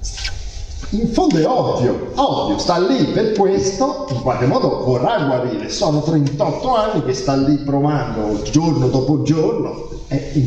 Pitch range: 95-150 Hz